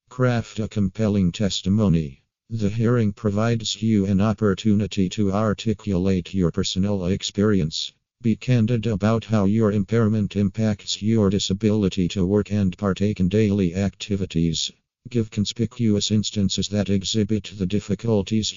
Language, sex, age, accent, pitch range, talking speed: English, male, 50-69, American, 95-110 Hz, 125 wpm